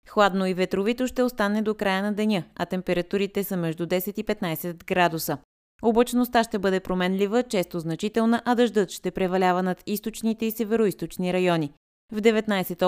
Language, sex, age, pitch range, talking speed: Bulgarian, female, 20-39, 175-220 Hz, 160 wpm